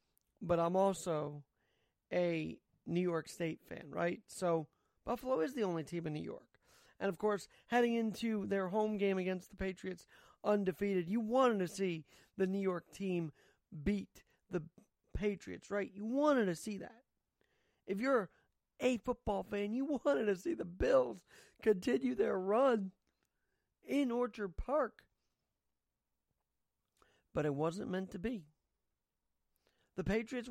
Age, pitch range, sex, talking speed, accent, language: 40-59, 190-240 Hz, male, 140 wpm, American, English